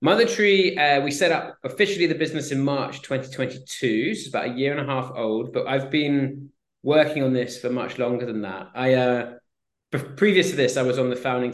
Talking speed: 225 wpm